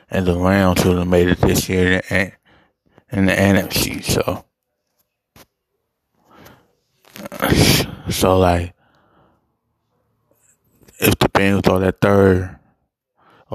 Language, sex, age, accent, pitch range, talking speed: English, male, 20-39, American, 90-100 Hz, 95 wpm